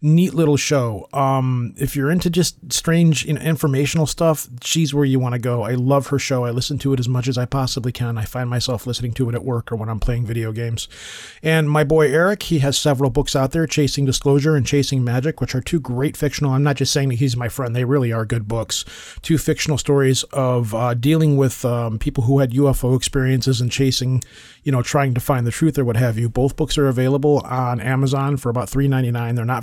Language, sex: English, male